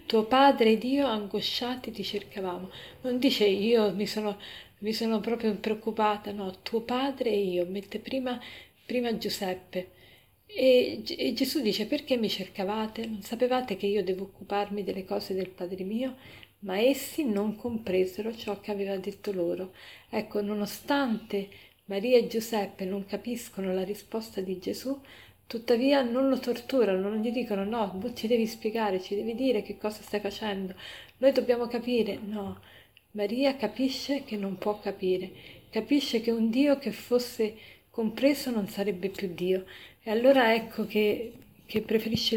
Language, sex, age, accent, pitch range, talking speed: Italian, female, 40-59, native, 200-240 Hz, 150 wpm